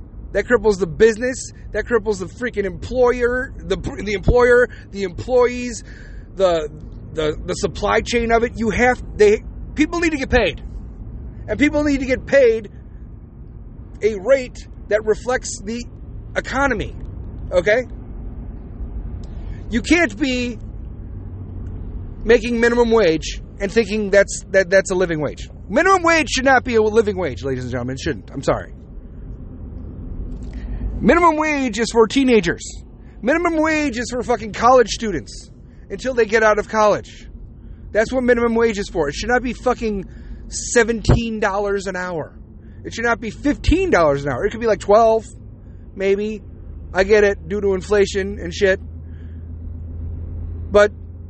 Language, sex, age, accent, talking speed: English, male, 40-59, American, 145 wpm